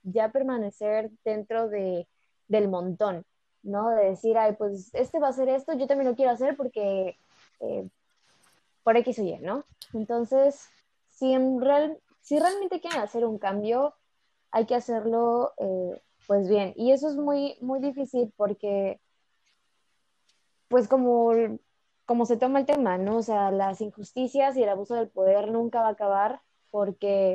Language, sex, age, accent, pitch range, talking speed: Spanish, female, 20-39, Mexican, 200-255 Hz, 160 wpm